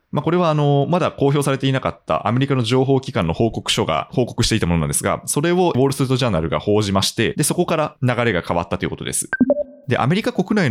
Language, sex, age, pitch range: Japanese, male, 20-39, 90-145 Hz